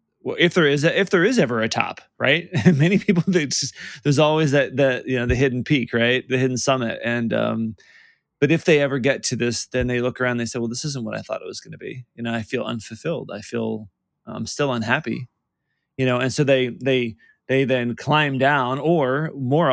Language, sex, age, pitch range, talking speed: English, male, 20-39, 115-135 Hz, 235 wpm